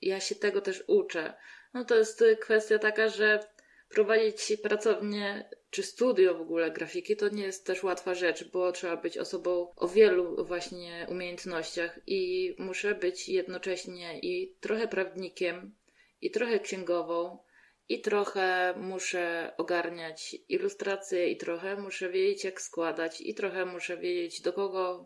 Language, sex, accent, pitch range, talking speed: Polish, female, native, 175-220 Hz, 140 wpm